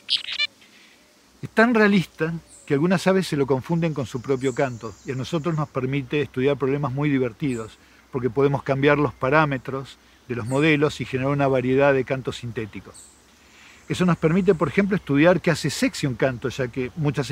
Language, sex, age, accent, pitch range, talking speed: Spanish, male, 50-69, Argentinian, 125-165 Hz, 175 wpm